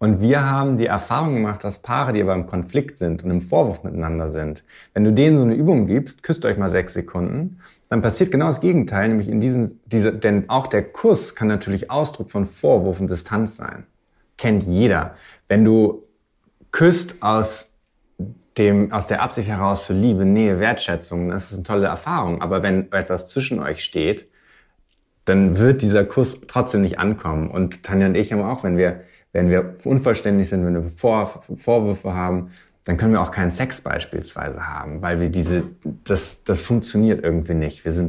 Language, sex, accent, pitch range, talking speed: German, male, German, 90-110 Hz, 185 wpm